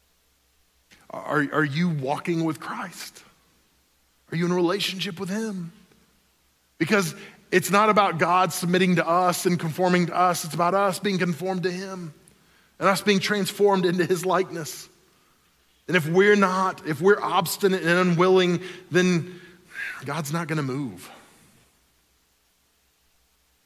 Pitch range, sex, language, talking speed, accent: 150-190 Hz, male, English, 135 wpm, American